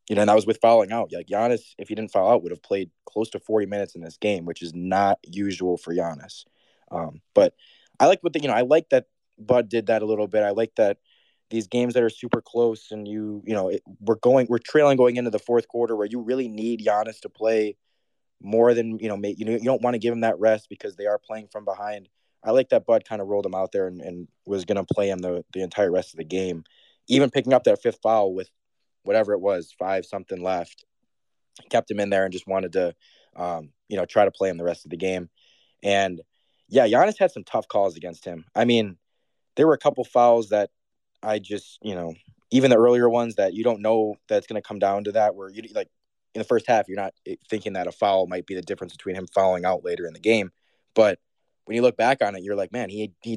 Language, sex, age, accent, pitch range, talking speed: English, male, 20-39, American, 95-120 Hz, 255 wpm